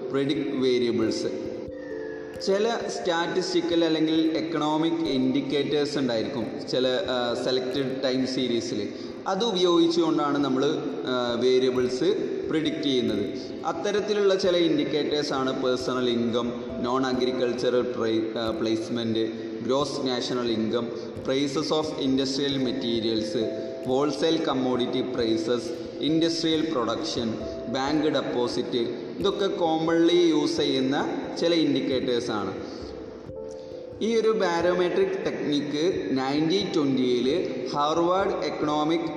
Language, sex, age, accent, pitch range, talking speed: Malayalam, male, 30-49, native, 125-165 Hz, 85 wpm